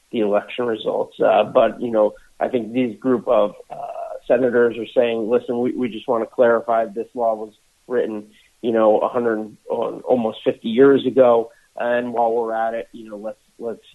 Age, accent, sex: 40-59, American, male